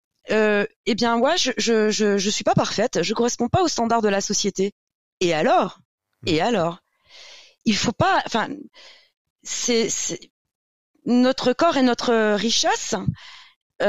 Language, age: French, 30-49